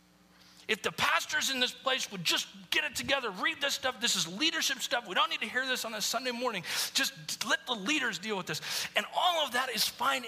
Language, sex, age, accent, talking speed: English, male, 40-59, American, 240 wpm